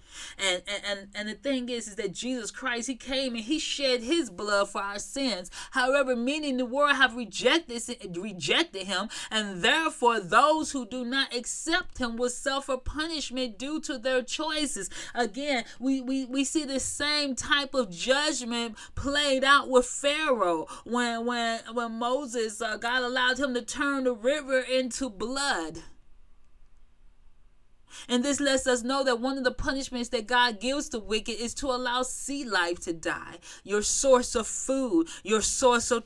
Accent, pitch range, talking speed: American, 220-270 Hz, 170 wpm